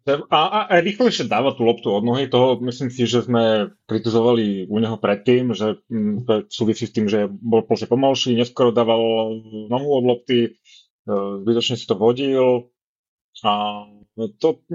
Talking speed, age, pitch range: 145 wpm, 30-49, 110-135 Hz